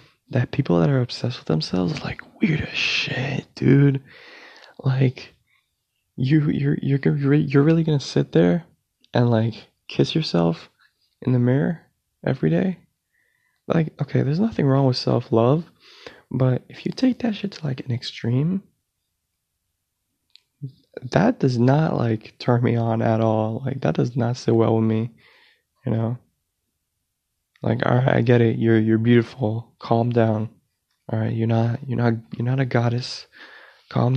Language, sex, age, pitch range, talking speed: English, male, 20-39, 115-145 Hz, 155 wpm